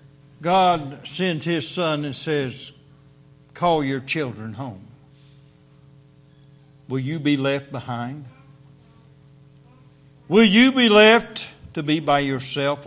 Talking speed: 105 wpm